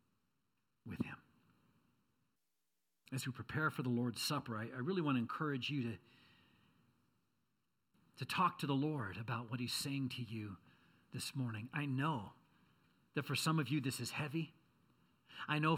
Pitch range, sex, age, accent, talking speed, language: 135-200 Hz, male, 50-69, American, 160 wpm, English